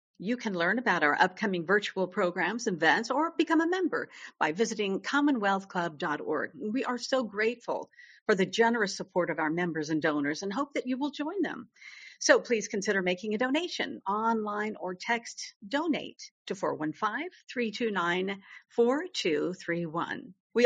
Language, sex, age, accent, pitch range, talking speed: English, female, 50-69, American, 195-280 Hz, 140 wpm